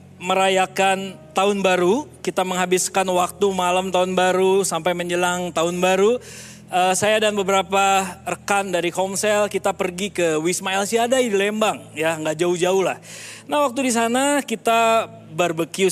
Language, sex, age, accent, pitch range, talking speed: Indonesian, male, 20-39, native, 180-230 Hz, 145 wpm